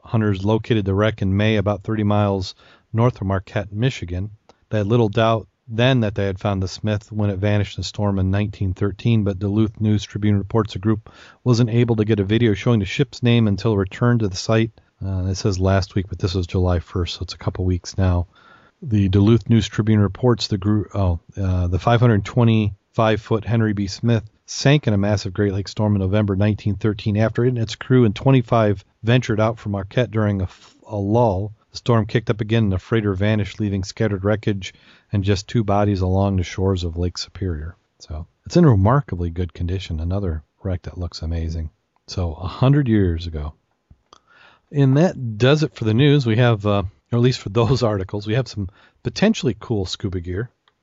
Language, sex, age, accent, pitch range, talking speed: English, male, 40-59, American, 95-115 Hz, 205 wpm